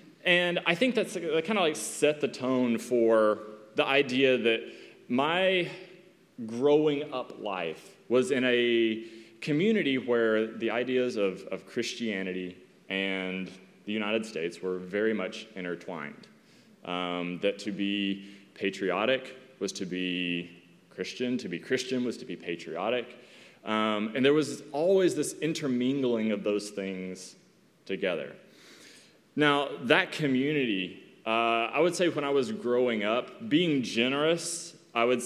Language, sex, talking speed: English, male, 135 wpm